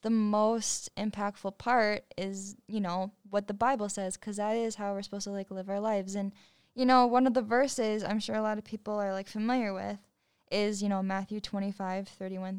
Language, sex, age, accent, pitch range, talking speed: English, female, 10-29, American, 195-220 Hz, 215 wpm